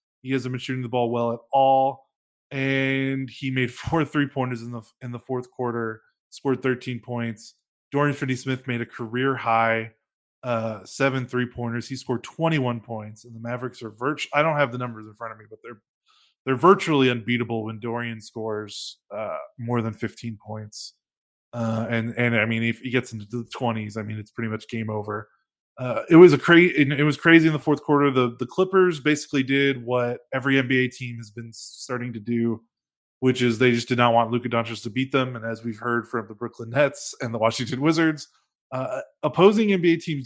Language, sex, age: English, male, 20-39